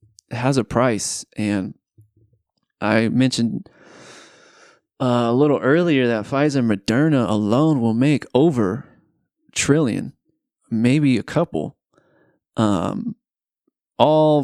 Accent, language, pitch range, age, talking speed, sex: American, English, 110-130 Hz, 20-39, 105 wpm, male